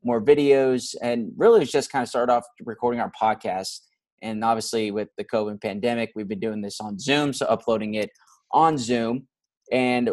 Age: 20-39